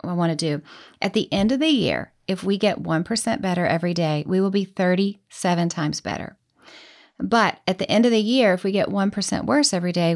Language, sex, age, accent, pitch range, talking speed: English, female, 40-59, American, 175-225 Hz, 220 wpm